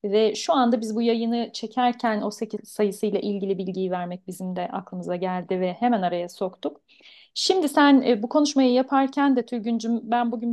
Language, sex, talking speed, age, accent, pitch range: Turkish, female, 170 wpm, 40-59, native, 210-250 Hz